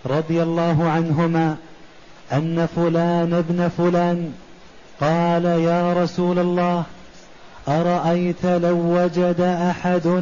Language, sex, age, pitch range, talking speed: Arabic, male, 30-49, 175-185 Hz, 90 wpm